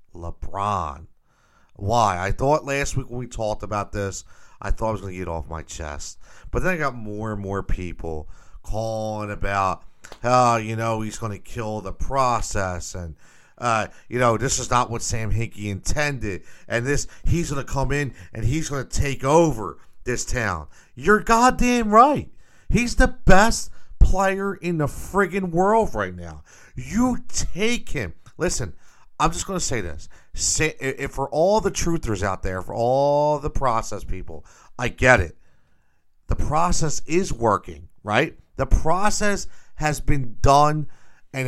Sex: male